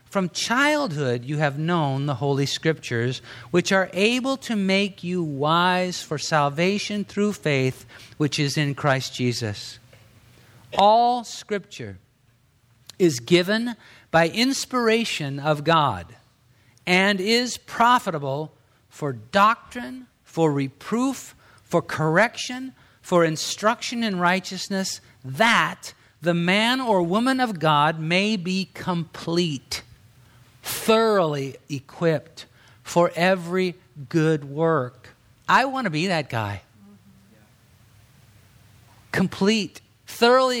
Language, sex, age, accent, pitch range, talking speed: English, male, 50-69, American, 125-195 Hz, 100 wpm